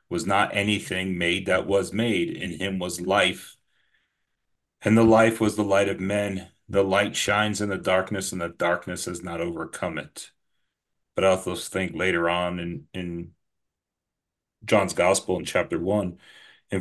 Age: 40-59